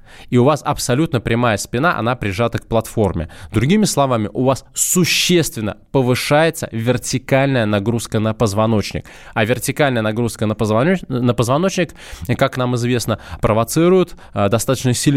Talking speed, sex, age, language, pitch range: 120 wpm, male, 20-39, Russian, 105-140 Hz